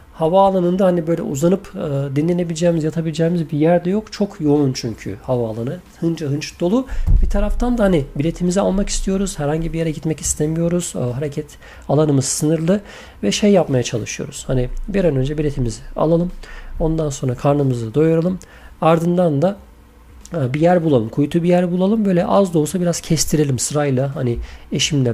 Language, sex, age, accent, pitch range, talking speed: Turkish, male, 40-59, native, 135-170 Hz, 155 wpm